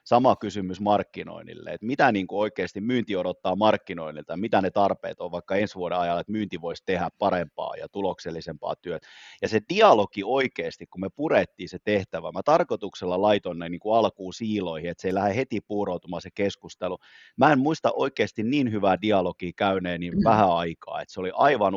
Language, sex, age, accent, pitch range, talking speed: Finnish, male, 30-49, native, 95-110 Hz, 185 wpm